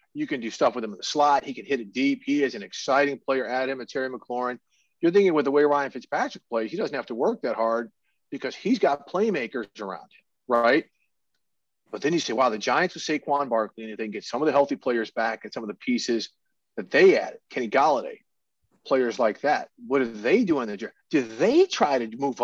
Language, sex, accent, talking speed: English, male, American, 245 wpm